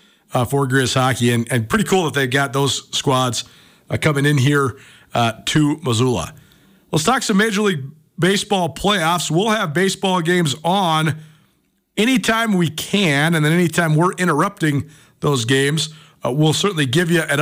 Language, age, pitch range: English, 40-59, 130-165 Hz